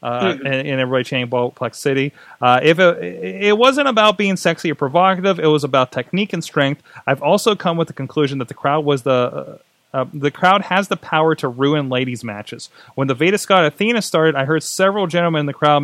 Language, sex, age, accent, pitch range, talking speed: English, male, 30-49, American, 130-175 Hz, 220 wpm